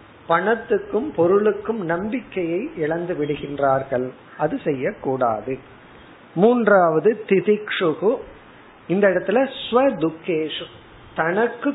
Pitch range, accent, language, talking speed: 150-195 Hz, native, Tamil, 65 wpm